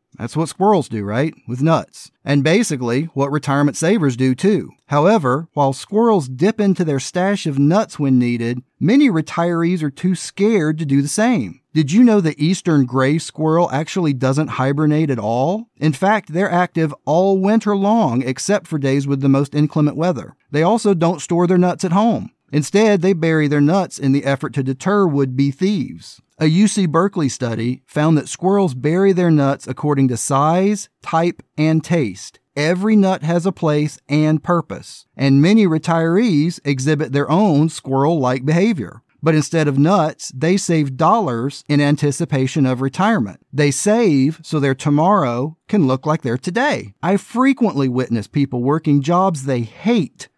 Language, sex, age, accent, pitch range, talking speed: English, male, 40-59, American, 140-190 Hz, 170 wpm